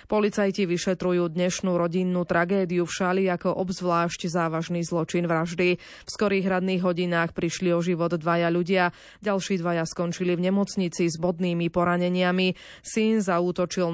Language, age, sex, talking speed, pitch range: Slovak, 20-39, female, 135 wpm, 170-195 Hz